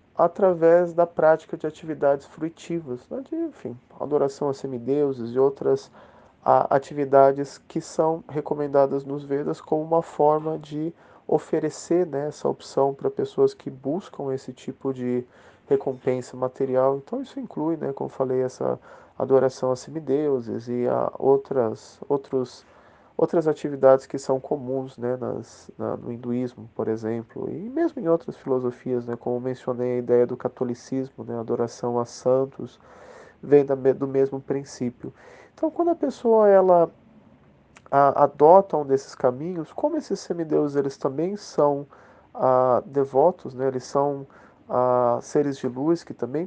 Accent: Brazilian